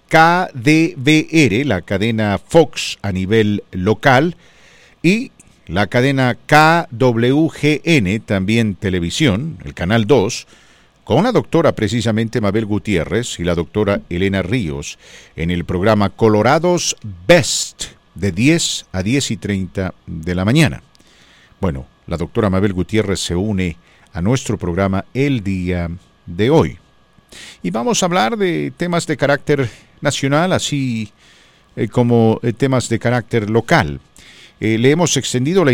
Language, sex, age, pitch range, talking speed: English, male, 50-69, 95-140 Hz, 130 wpm